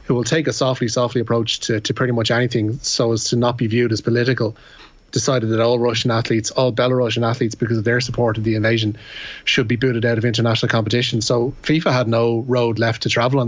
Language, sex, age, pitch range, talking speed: English, male, 20-39, 115-125 Hz, 225 wpm